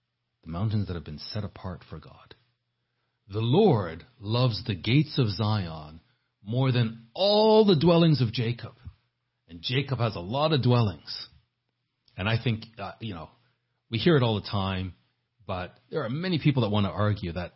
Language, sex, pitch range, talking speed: English, male, 105-125 Hz, 175 wpm